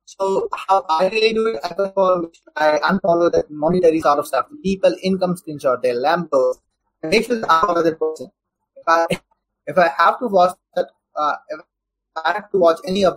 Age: 20-39